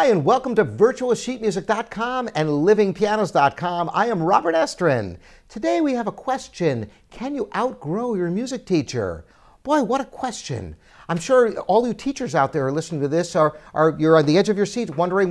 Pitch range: 150-220 Hz